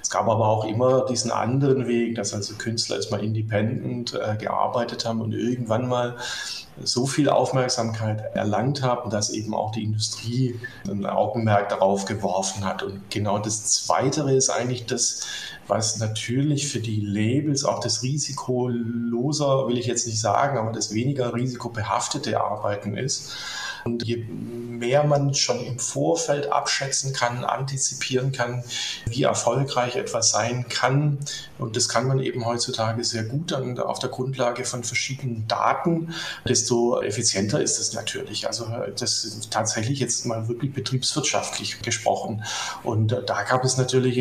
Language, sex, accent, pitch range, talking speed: German, male, German, 110-135 Hz, 150 wpm